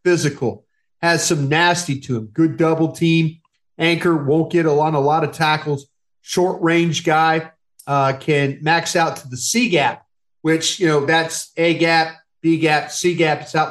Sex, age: male, 40-59